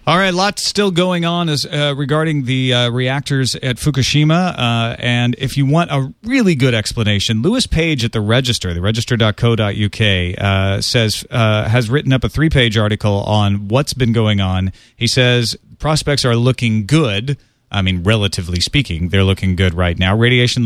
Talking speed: 175 wpm